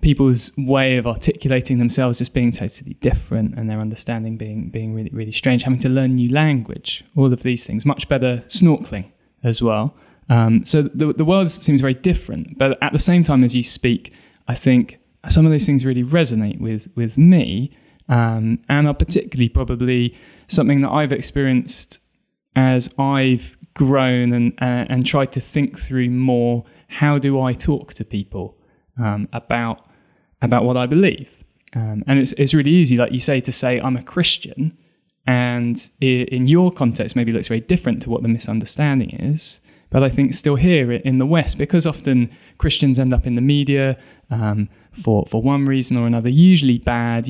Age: 20-39